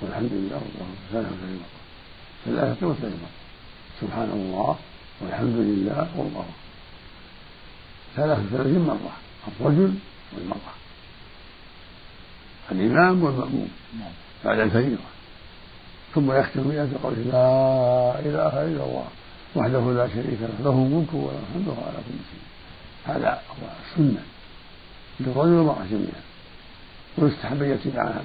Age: 50-69